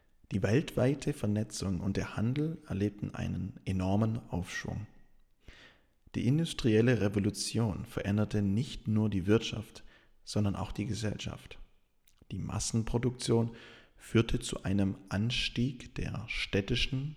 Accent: German